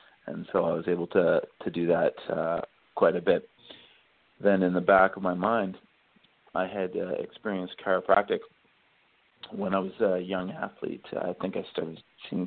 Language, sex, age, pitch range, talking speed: English, male, 40-59, 95-115 Hz, 175 wpm